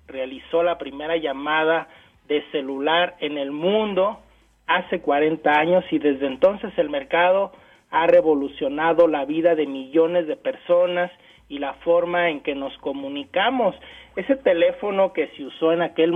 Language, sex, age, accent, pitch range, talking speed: Spanish, male, 40-59, Mexican, 155-185 Hz, 145 wpm